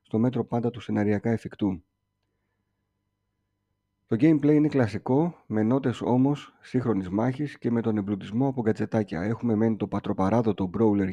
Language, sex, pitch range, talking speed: Greek, male, 100-125 Hz, 140 wpm